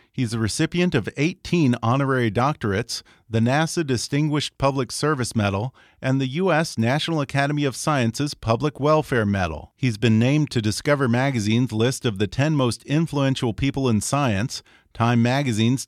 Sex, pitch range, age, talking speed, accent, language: male, 115-155 Hz, 40-59, 150 wpm, American, English